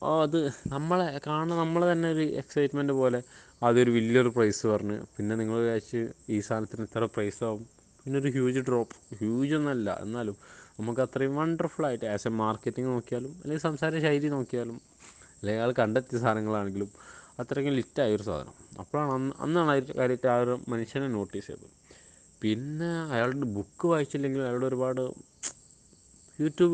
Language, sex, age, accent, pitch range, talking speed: Malayalam, male, 20-39, native, 115-155 Hz, 130 wpm